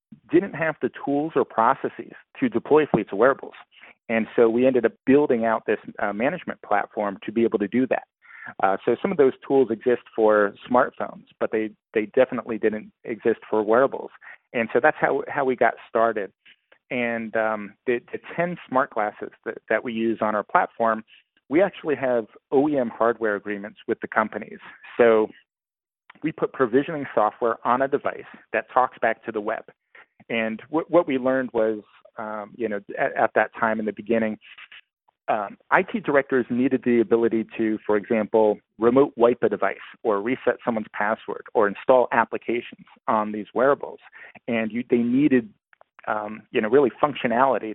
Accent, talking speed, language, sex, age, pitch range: American, 170 wpm, English, male, 40-59, 110-130 Hz